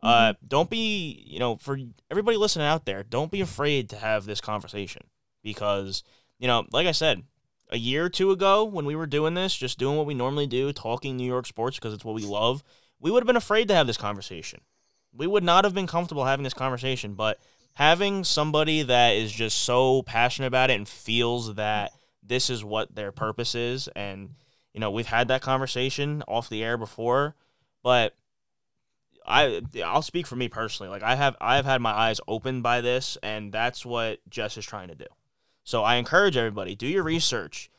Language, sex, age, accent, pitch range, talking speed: English, male, 20-39, American, 115-150 Hz, 205 wpm